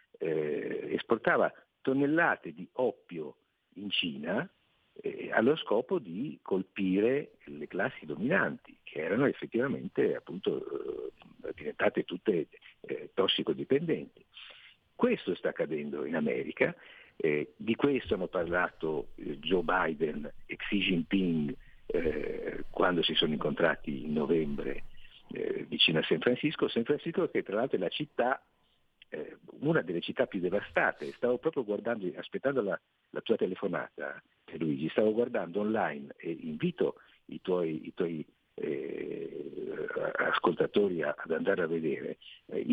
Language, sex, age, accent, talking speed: Italian, male, 50-69, native, 125 wpm